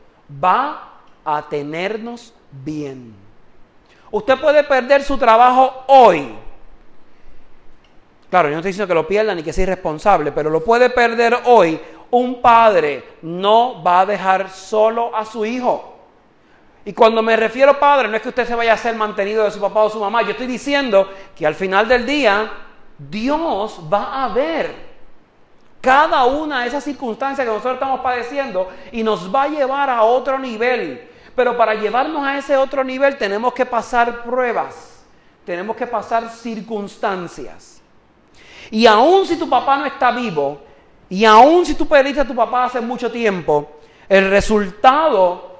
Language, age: Spanish, 40-59